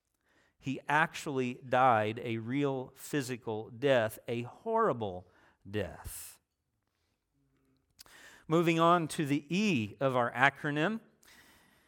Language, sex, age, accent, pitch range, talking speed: English, male, 50-69, American, 125-170 Hz, 90 wpm